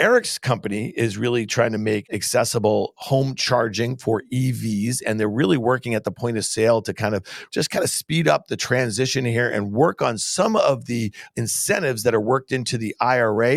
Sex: male